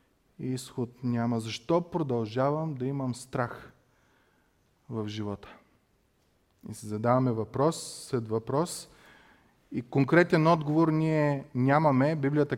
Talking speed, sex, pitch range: 105 wpm, male, 125-155 Hz